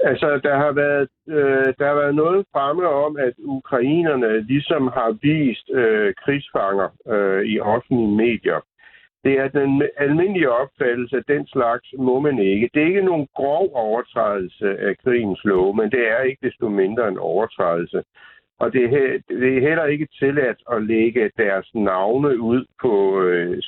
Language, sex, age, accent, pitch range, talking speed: Danish, male, 60-79, native, 115-155 Hz, 160 wpm